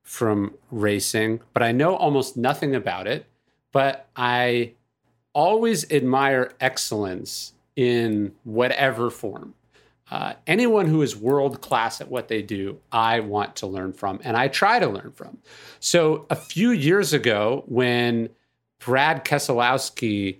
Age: 40-59